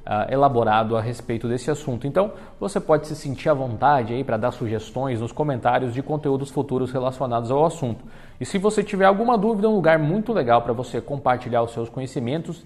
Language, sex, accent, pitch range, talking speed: Portuguese, male, Brazilian, 125-165 Hz, 185 wpm